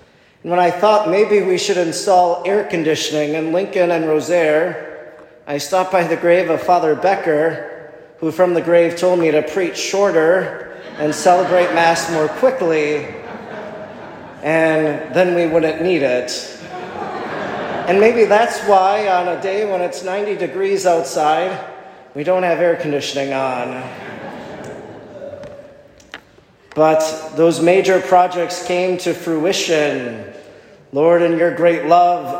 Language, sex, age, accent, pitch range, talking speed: English, male, 40-59, American, 160-195 Hz, 130 wpm